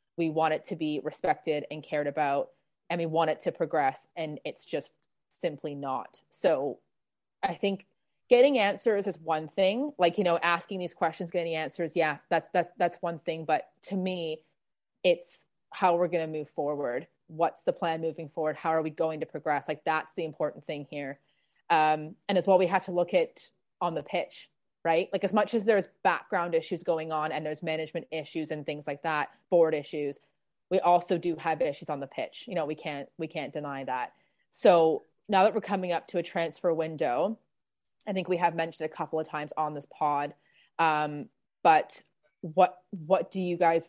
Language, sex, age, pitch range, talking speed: English, female, 30-49, 155-180 Hz, 200 wpm